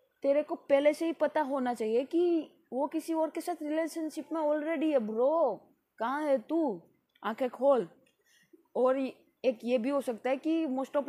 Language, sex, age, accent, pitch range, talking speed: Hindi, female, 20-39, native, 215-265 Hz, 185 wpm